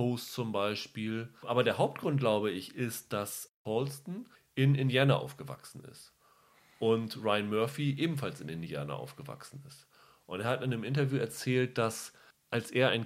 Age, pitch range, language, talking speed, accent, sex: 30-49, 115-140 Hz, German, 150 wpm, German, male